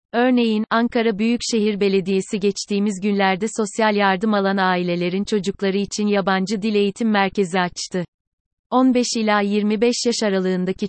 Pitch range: 190-220 Hz